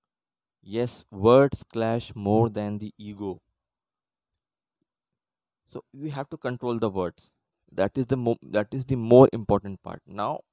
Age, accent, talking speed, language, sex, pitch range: 20-39, native, 140 wpm, Hindi, male, 105-120 Hz